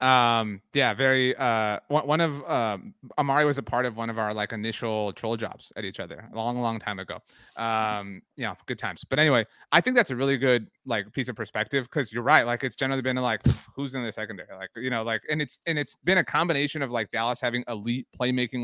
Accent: American